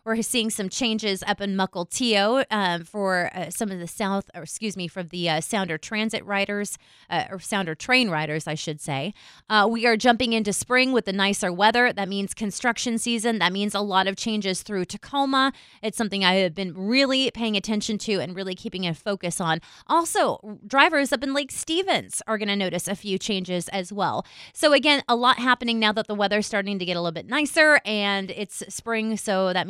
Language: English